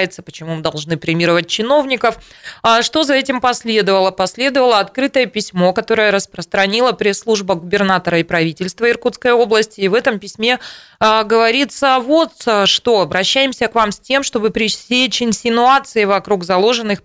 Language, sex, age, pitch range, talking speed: Russian, female, 20-39, 180-225 Hz, 130 wpm